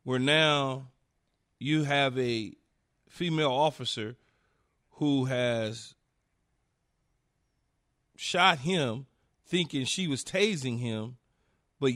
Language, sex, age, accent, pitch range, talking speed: English, male, 40-59, American, 135-200 Hz, 85 wpm